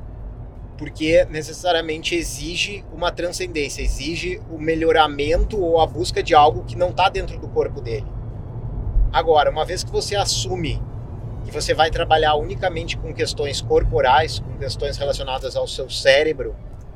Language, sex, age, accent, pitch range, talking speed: Portuguese, male, 30-49, Brazilian, 115-165 Hz, 140 wpm